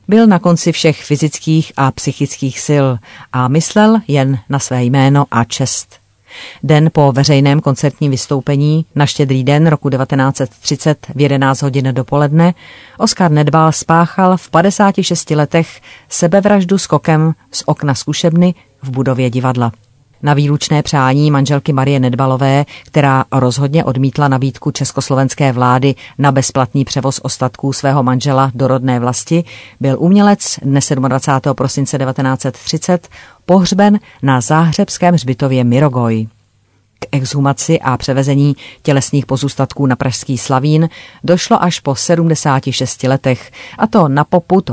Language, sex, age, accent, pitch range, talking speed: Czech, female, 40-59, native, 130-160 Hz, 125 wpm